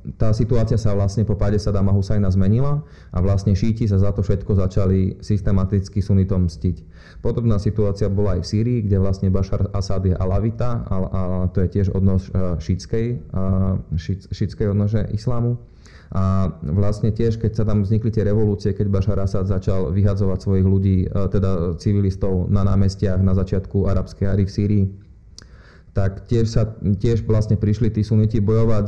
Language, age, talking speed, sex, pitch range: Slovak, 20-39, 160 wpm, male, 95-110 Hz